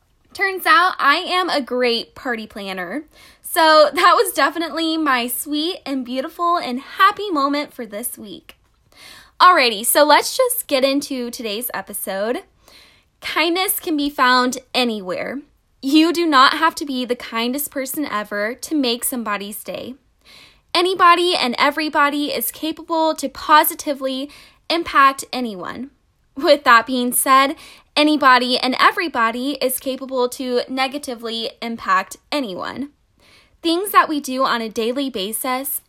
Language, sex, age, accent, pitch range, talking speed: English, female, 10-29, American, 245-315 Hz, 130 wpm